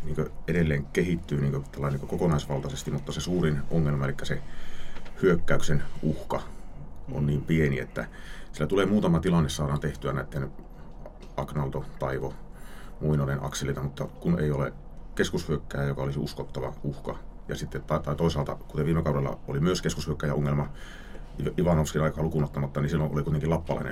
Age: 30-49